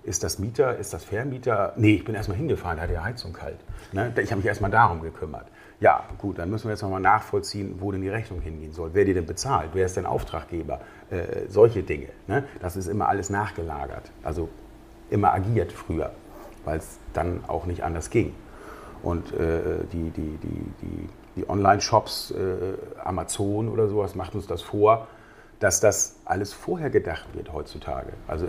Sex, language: male, German